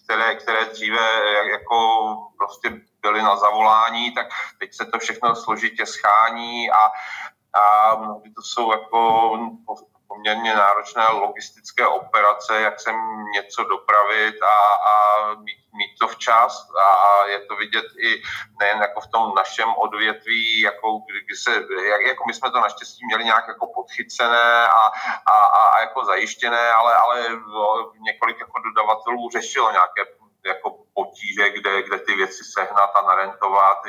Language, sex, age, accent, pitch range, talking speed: Czech, male, 40-59, native, 105-115 Hz, 140 wpm